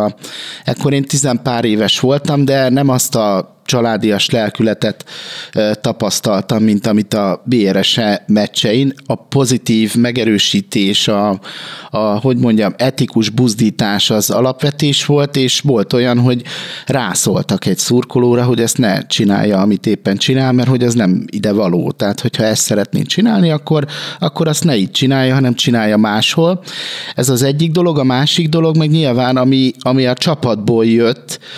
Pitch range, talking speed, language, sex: 115-140 Hz, 145 wpm, Hungarian, male